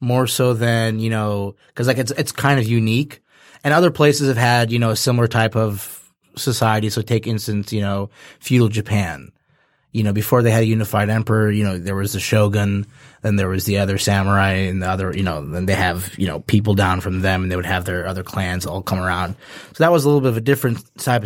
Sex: male